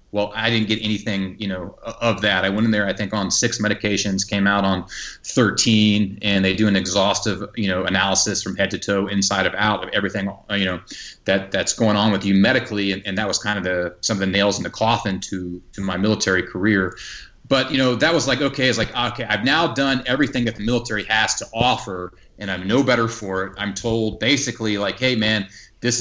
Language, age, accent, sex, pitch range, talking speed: English, 30-49, American, male, 100-120 Hz, 230 wpm